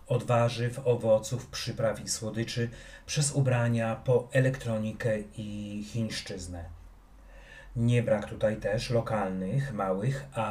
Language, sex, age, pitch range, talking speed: Polish, male, 30-49, 105-130 Hz, 110 wpm